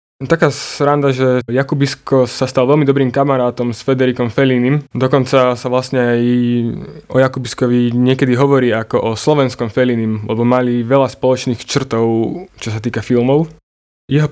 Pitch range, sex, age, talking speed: 125-145 Hz, male, 20-39, 145 wpm